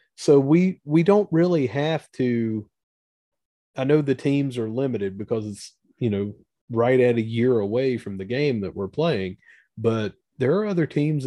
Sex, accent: male, American